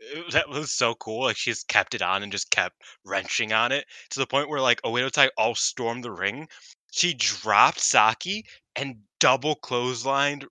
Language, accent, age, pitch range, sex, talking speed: English, American, 20-39, 110-140 Hz, male, 185 wpm